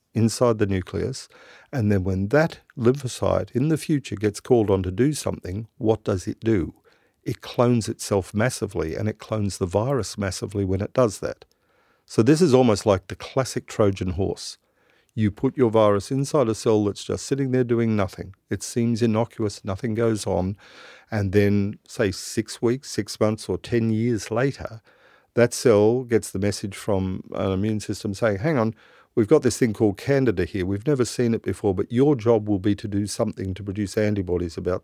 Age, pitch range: 50-69, 100-125 Hz